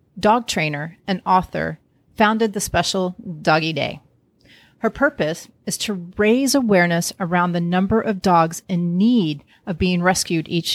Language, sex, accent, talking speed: English, female, American, 145 wpm